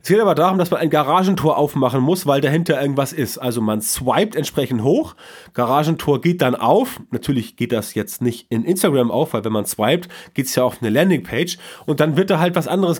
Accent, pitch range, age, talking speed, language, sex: German, 125-170 Hz, 30-49, 220 wpm, German, male